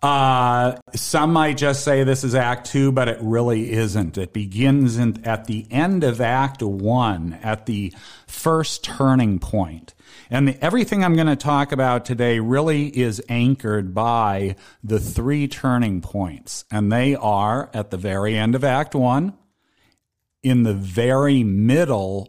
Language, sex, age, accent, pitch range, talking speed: English, male, 40-59, American, 110-135 Hz, 155 wpm